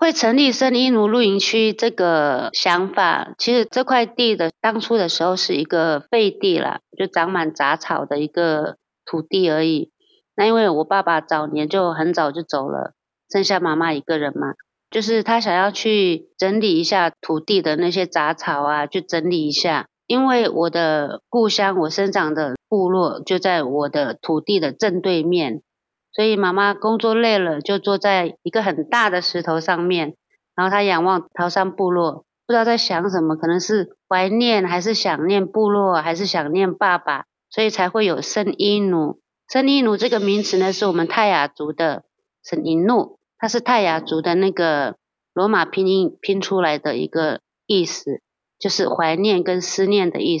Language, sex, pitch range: Chinese, female, 165-215 Hz